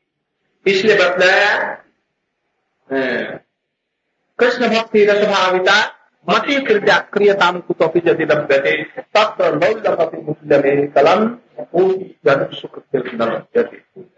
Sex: male